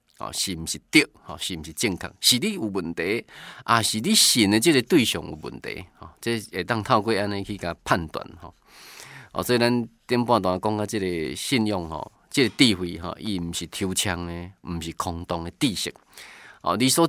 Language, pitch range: Chinese, 90-115 Hz